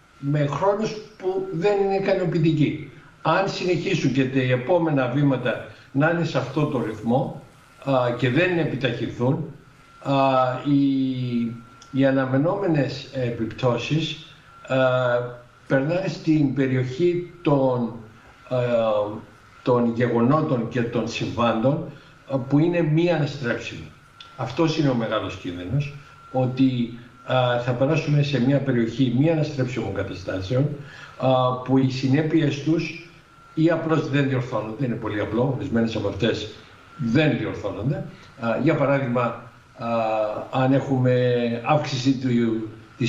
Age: 60-79